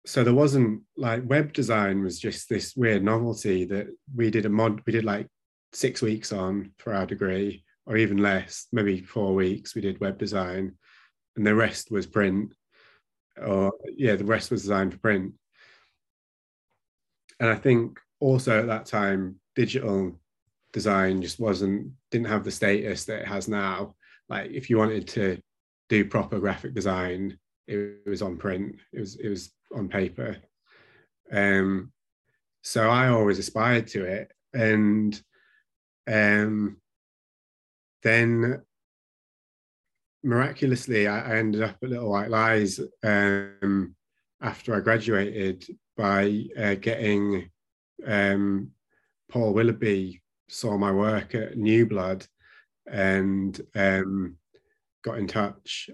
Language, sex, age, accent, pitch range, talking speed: English, male, 30-49, British, 95-115 Hz, 135 wpm